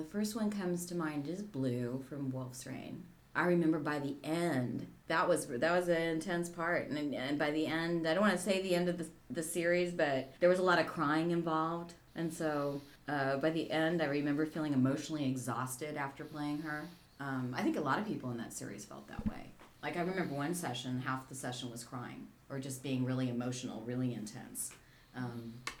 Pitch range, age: 130-165 Hz, 30-49